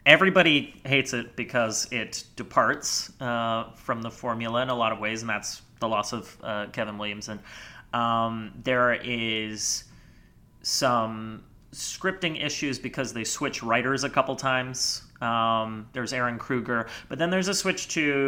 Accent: American